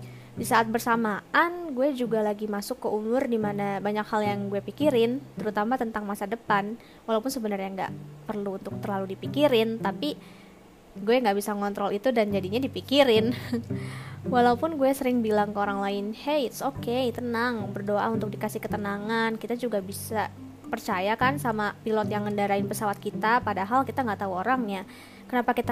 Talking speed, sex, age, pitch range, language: 160 wpm, female, 20-39, 205-245 Hz, Indonesian